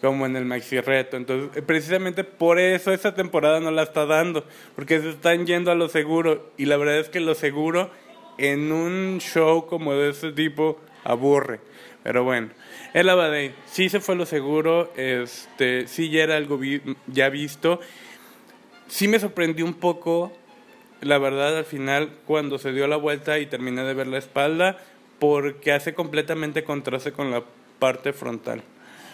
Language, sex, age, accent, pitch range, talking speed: Spanish, male, 20-39, Mexican, 140-170 Hz, 170 wpm